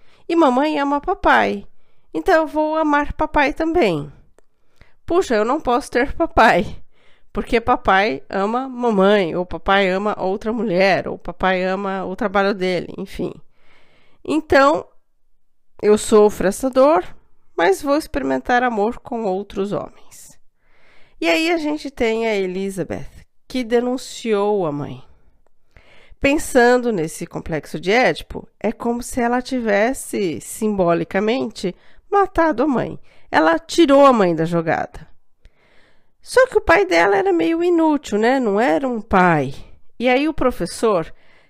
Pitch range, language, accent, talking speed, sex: 195-290 Hz, Portuguese, Brazilian, 130 wpm, female